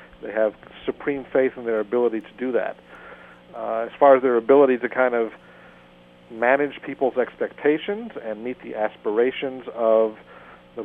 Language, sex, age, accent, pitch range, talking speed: English, male, 50-69, American, 115-140 Hz, 155 wpm